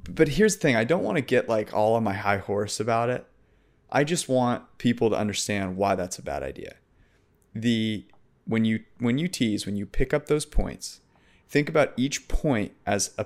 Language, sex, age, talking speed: English, male, 30-49, 210 wpm